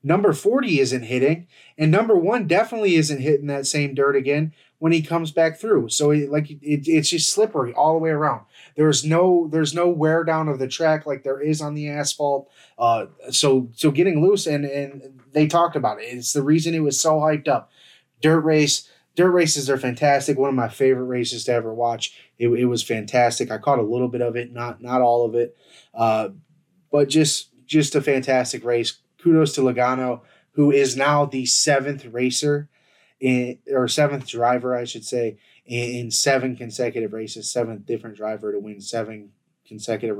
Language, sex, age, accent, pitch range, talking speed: English, male, 20-39, American, 120-150 Hz, 190 wpm